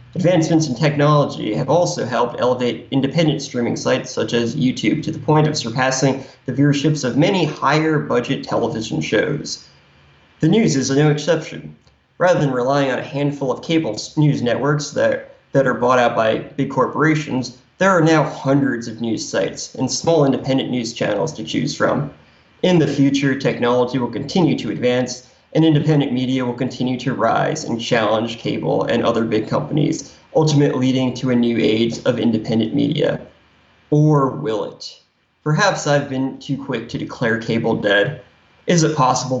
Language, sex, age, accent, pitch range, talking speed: English, male, 30-49, American, 120-145 Hz, 170 wpm